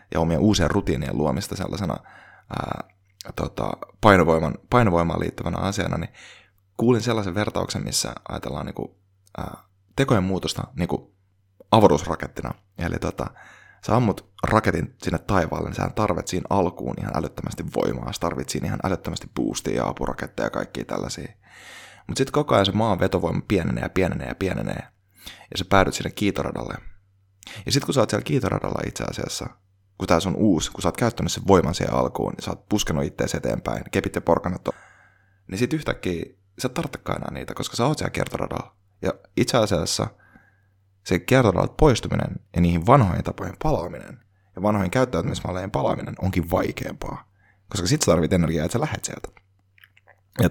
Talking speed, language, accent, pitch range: 155 wpm, Finnish, native, 85-105 Hz